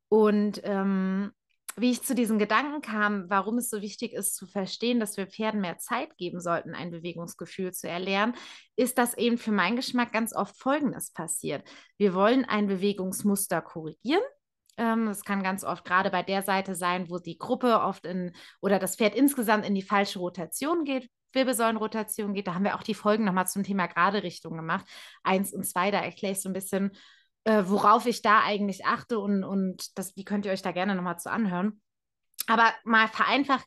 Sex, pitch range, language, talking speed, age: female, 190-235 Hz, German, 190 wpm, 20-39